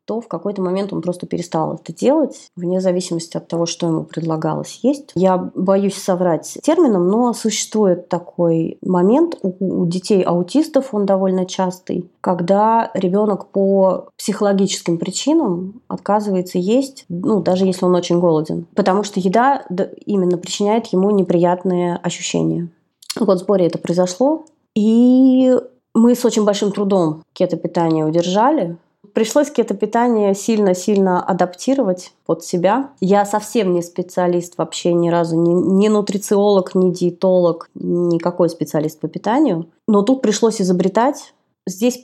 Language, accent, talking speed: Russian, native, 135 wpm